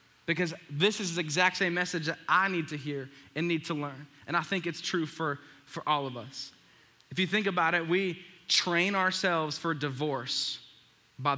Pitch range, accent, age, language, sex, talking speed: 145-195 Hz, American, 10-29, English, male, 195 wpm